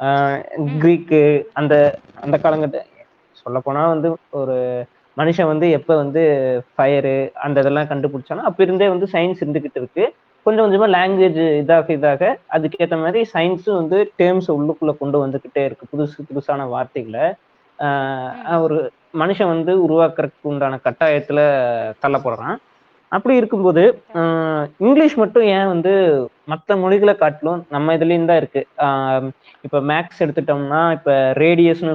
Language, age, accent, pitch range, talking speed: Tamil, 20-39, native, 145-180 Hz, 120 wpm